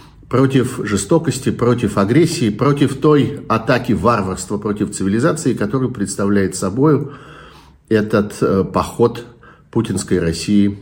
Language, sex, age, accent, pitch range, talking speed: Russian, male, 50-69, native, 100-140 Hz, 95 wpm